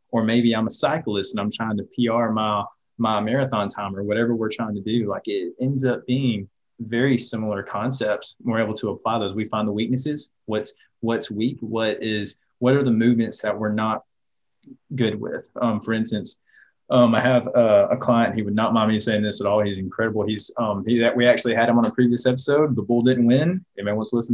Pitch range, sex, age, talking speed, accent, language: 105-120 Hz, male, 20-39, 225 wpm, American, English